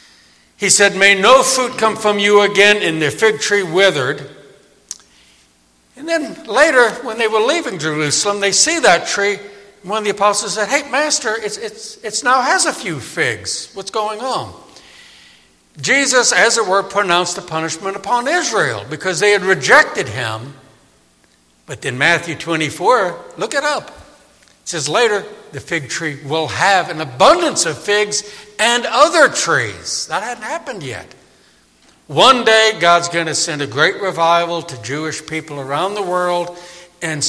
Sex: male